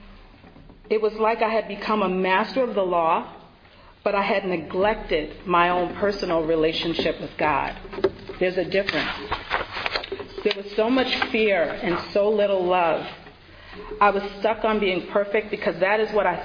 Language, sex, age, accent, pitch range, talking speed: English, female, 40-59, American, 175-220 Hz, 160 wpm